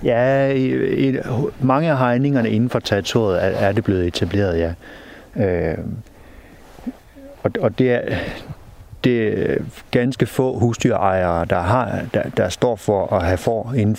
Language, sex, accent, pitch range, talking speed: Danish, male, native, 90-110 Hz, 145 wpm